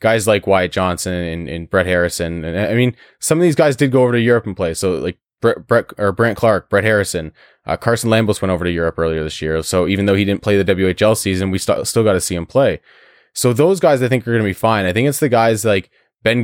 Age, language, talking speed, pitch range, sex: 20-39, English, 270 wpm, 95-120 Hz, male